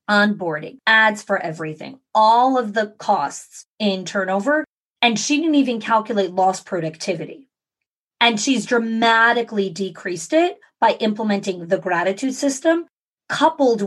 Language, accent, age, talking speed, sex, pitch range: English, American, 30-49, 120 wpm, female, 190-245 Hz